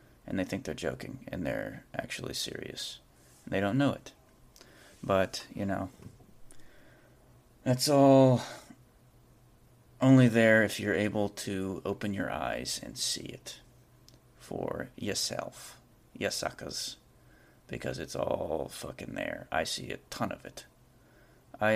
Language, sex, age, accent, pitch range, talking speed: English, male, 30-49, American, 100-125 Hz, 125 wpm